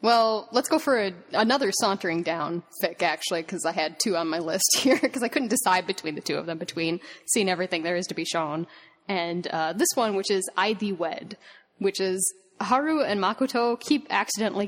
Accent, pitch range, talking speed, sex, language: American, 185-265 Hz, 210 wpm, female, English